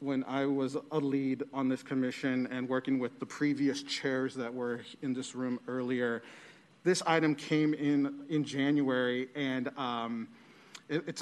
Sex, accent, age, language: male, American, 40-59, English